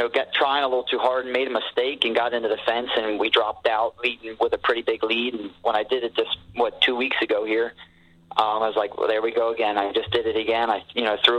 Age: 30-49